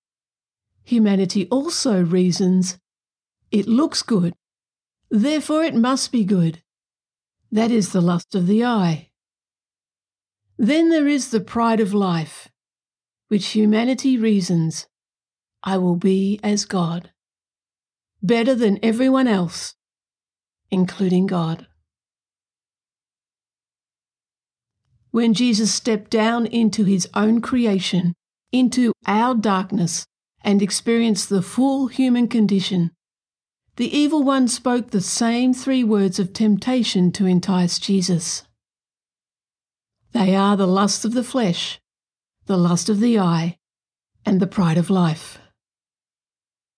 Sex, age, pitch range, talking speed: female, 50-69, 175-235 Hz, 110 wpm